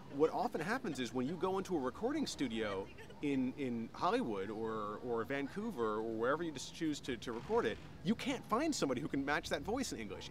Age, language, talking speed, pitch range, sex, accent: 30-49, English, 215 wpm, 125-185 Hz, male, American